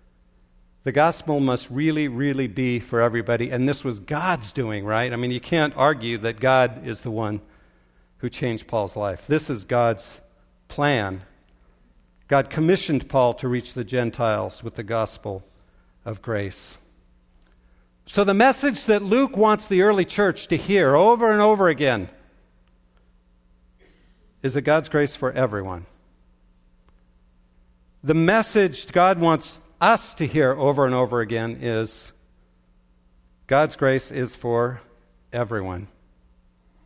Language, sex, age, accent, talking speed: English, male, 50-69, American, 135 wpm